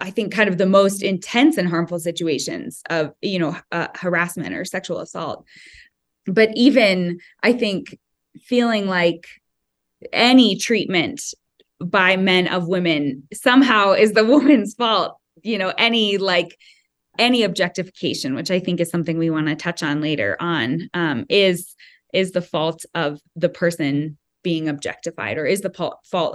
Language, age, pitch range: English, 20-39, 170-205 Hz